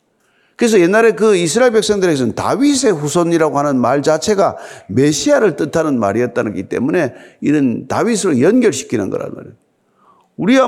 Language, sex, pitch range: Korean, male, 155-245 Hz